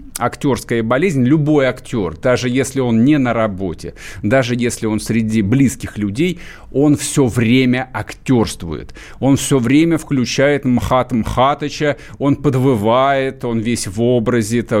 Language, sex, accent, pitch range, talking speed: Russian, male, native, 115-150 Hz, 135 wpm